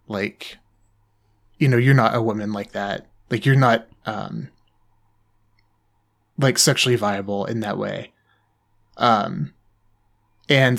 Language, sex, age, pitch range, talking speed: English, male, 20-39, 105-130 Hz, 115 wpm